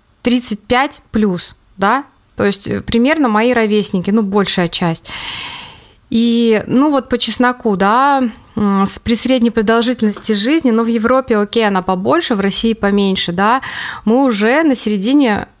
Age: 20-39